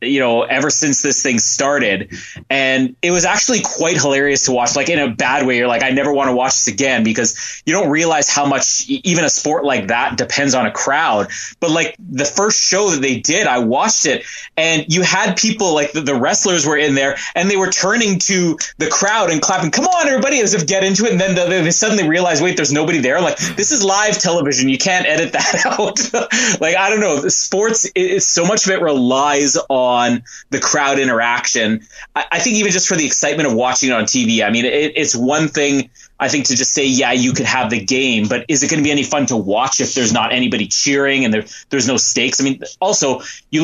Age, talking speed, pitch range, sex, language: 20-39, 230 wpm, 130-185 Hz, male, English